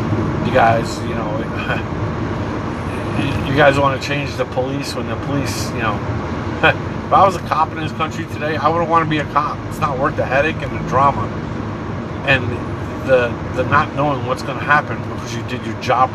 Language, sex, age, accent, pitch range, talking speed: English, male, 50-69, American, 110-135 Hz, 195 wpm